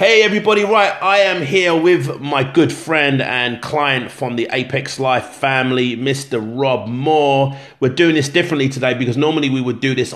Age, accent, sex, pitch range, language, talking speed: 30-49, British, male, 120-140 Hz, English, 185 wpm